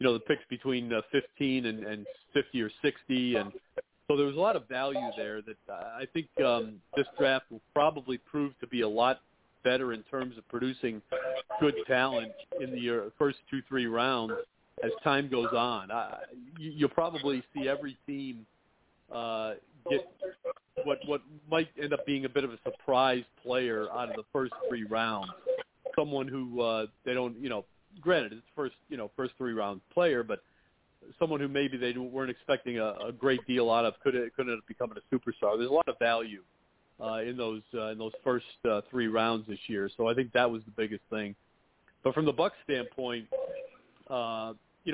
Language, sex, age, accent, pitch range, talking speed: English, male, 40-59, American, 115-140 Hz, 195 wpm